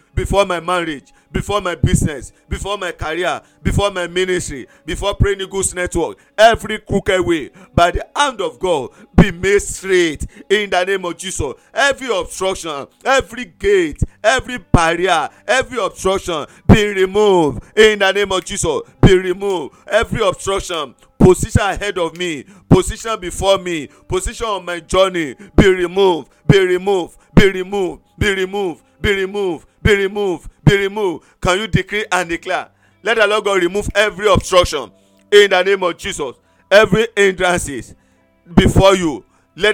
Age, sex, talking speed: 50-69, male, 150 wpm